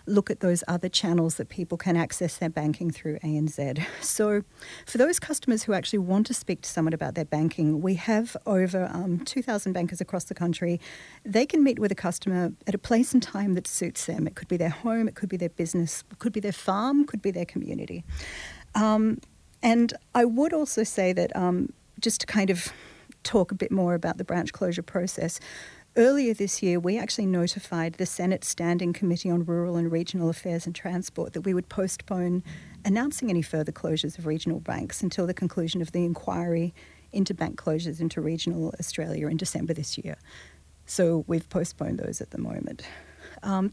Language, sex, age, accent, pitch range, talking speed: English, female, 40-59, Australian, 165-205 Hz, 195 wpm